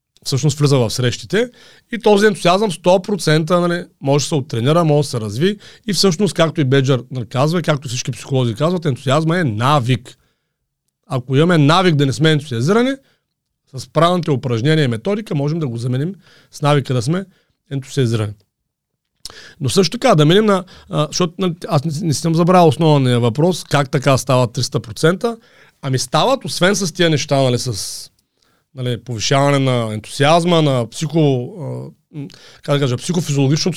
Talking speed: 155 wpm